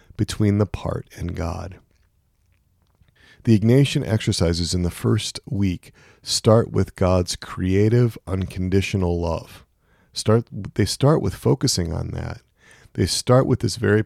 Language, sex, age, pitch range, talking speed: English, male, 40-59, 90-110 Hz, 130 wpm